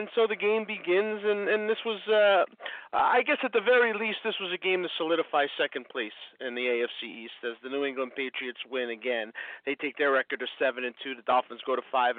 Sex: male